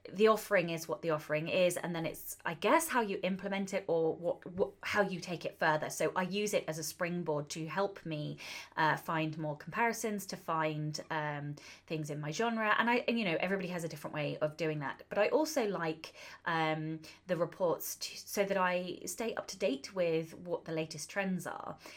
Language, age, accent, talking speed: English, 20-39, British, 215 wpm